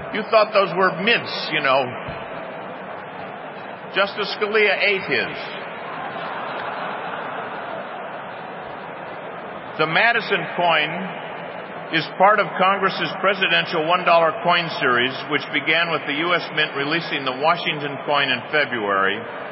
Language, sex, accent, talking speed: English, male, American, 110 wpm